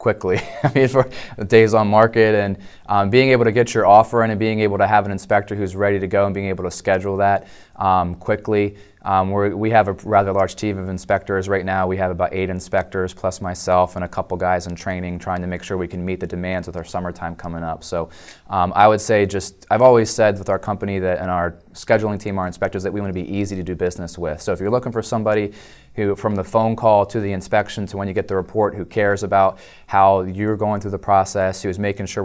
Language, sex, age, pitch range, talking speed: English, male, 20-39, 90-105 Hz, 250 wpm